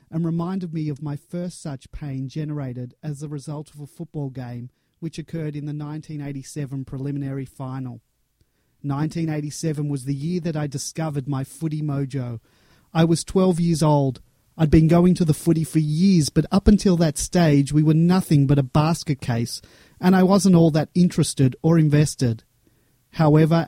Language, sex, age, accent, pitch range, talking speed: English, male, 30-49, Australian, 135-165 Hz, 170 wpm